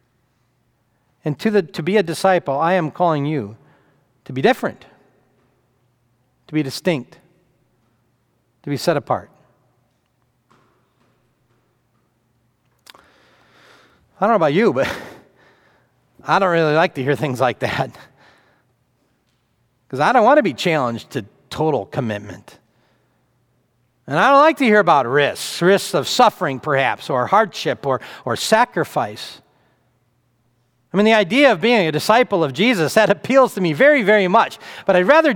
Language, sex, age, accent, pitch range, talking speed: English, male, 40-59, American, 120-190 Hz, 140 wpm